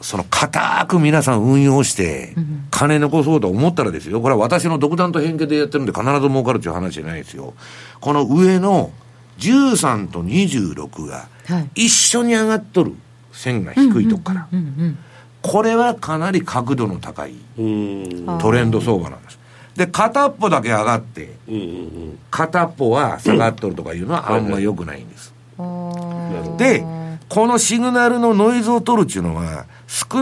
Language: Japanese